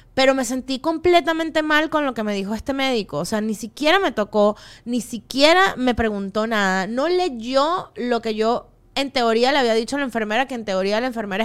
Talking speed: 215 wpm